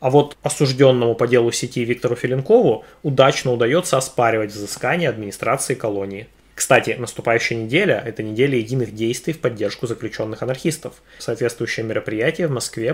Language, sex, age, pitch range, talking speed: Russian, male, 20-39, 110-155 Hz, 135 wpm